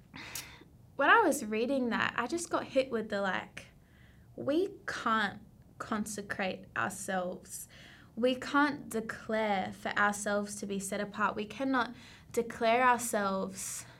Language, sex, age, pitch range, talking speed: English, female, 20-39, 210-245 Hz, 125 wpm